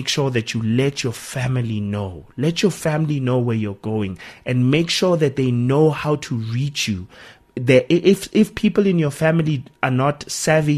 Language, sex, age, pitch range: English, male, 30-49, 120-145 Hz